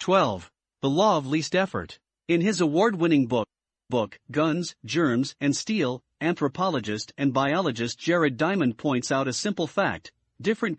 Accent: American